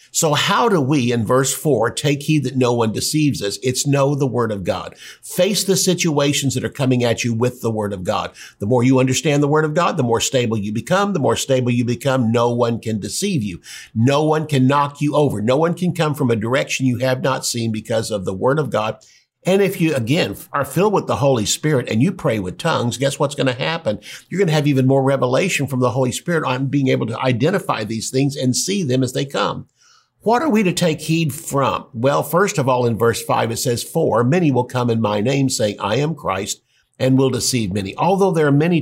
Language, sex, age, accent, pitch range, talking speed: English, male, 50-69, American, 120-155 Hz, 245 wpm